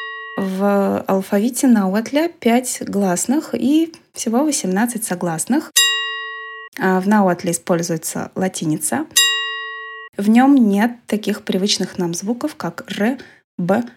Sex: female